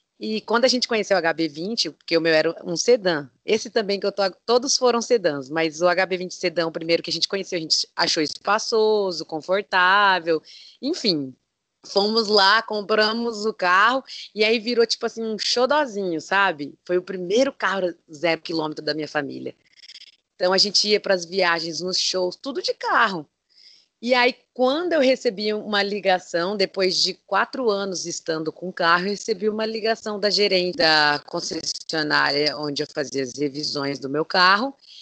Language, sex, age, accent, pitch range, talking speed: Portuguese, female, 20-39, Brazilian, 165-230 Hz, 180 wpm